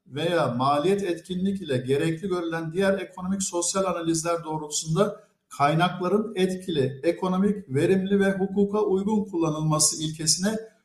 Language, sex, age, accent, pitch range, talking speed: Turkish, male, 50-69, native, 160-205 Hz, 110 wpm